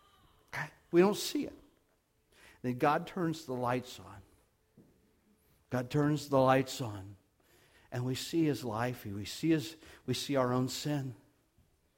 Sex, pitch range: male, 125-165 Hz